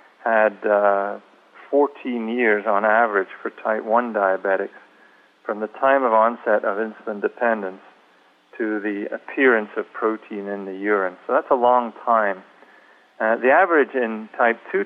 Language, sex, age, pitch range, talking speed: English, male, 40-59, 100-120 Hz, 150 wpm